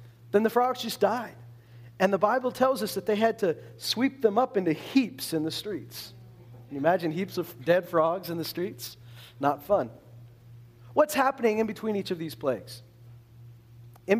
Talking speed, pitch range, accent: 180 wpm, 120-180 Hz, American